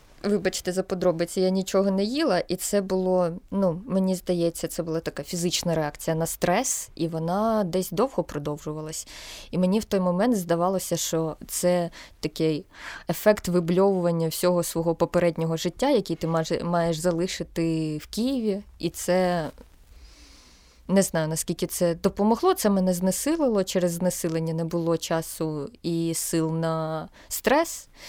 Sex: female